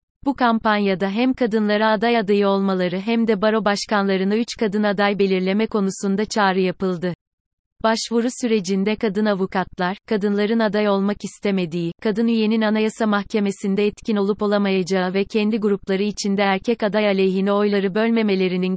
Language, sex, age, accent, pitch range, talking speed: Turkish, female, 30-49, native, 195-220 Hz, 135 wpm